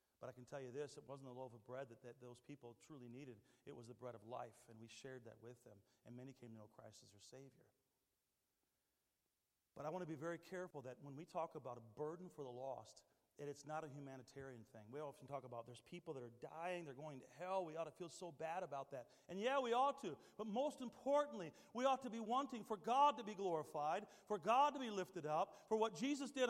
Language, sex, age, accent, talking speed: English, male, 40-59, American, 250 wpm